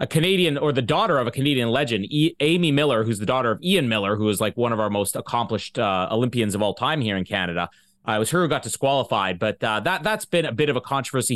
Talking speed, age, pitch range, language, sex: 270 wpm, 30-49, 120-190 Hz, English, male